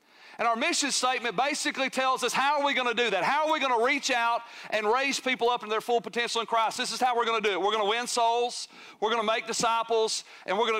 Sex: male